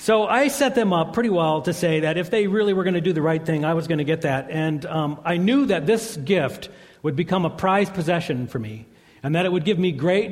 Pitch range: 140-180 Hz